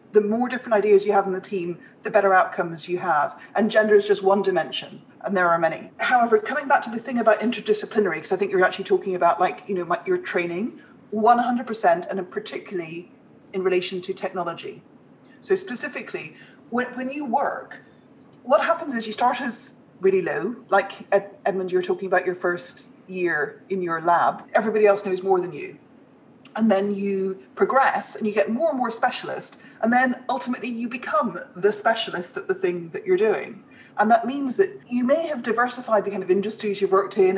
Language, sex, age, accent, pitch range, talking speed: English, female, 30-49, British, 190-245 Hz, 195 wpm